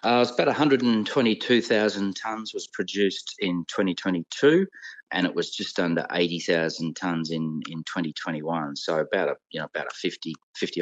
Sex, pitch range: male, 75-90 Hz